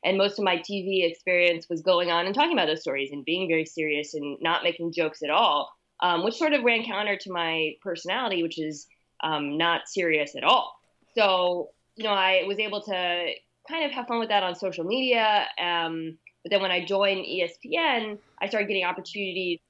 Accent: American